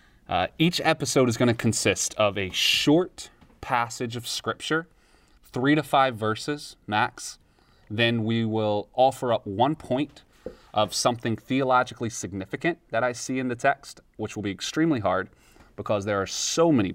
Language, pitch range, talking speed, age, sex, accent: English, 100-135 Hz, 160 wpm, 30-49, male, American